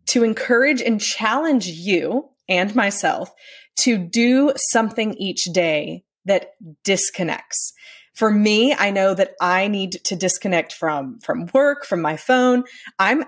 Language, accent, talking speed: English, American, 135 wpm